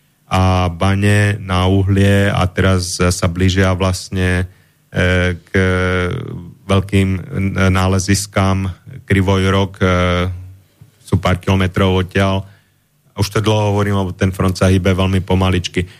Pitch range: 95-110 Hz